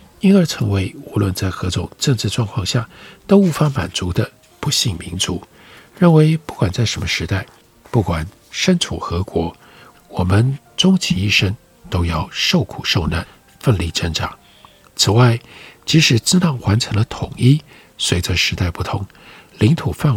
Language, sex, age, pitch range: Chinese, male, 60-79, 95-145 Hz